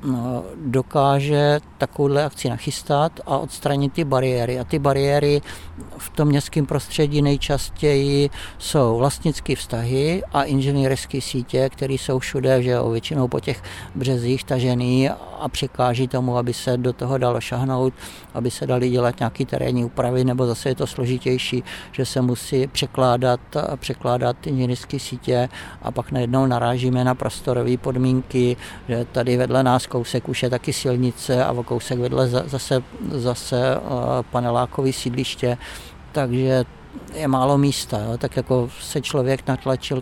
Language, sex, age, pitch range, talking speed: Czech, male, 60-79, 125-140 Hz, 140 wpm